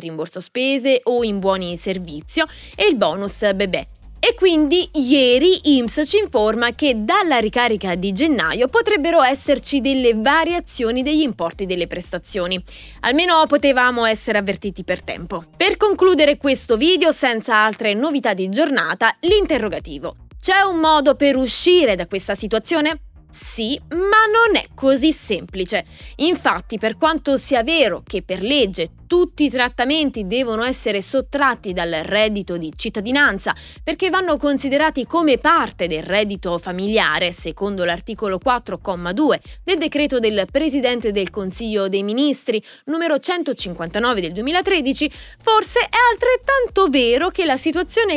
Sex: female